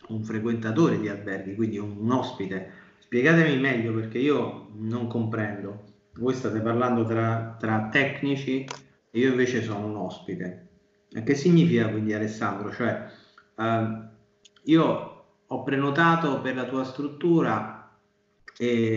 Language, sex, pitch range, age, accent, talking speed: Italian, male, 110-140 Hz, 30-49, native, 125 wpm